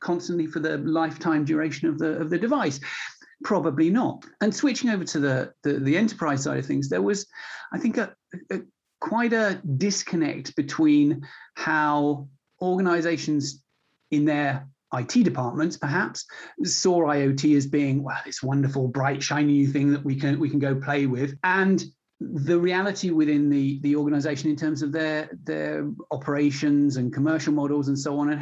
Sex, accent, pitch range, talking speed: male, British, 145-170 Hz, 165 wpm